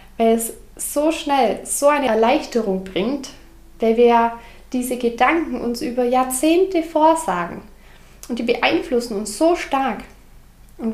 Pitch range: 225-275 Hz